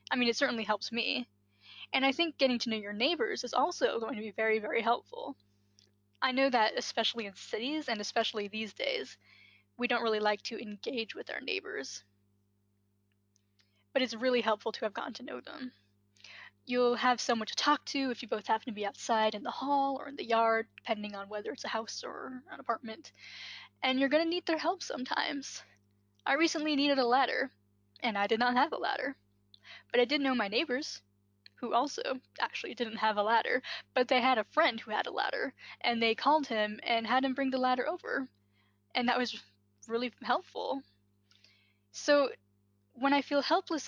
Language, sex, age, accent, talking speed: English, female, 10-29, American, 195 wpm